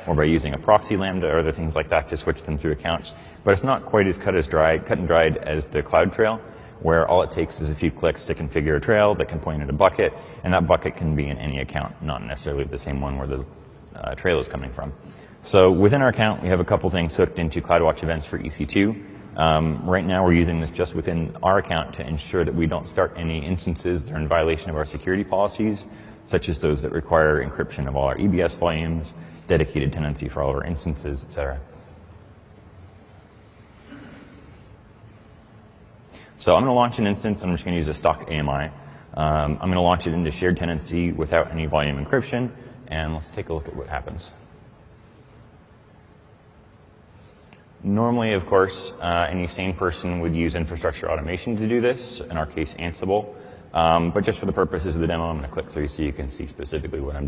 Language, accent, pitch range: English, American, 75-95 Hz